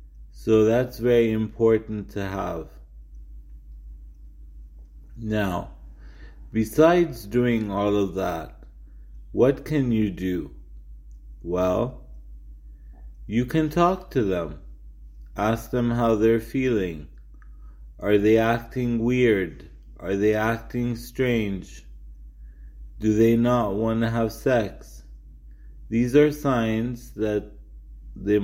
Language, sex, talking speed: English, male, 100 wpm